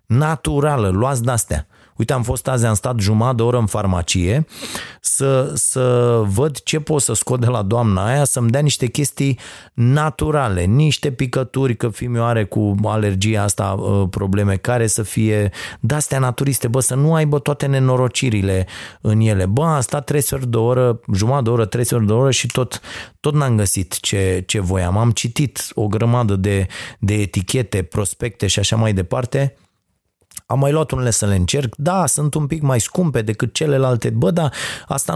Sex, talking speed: male, 180 wpm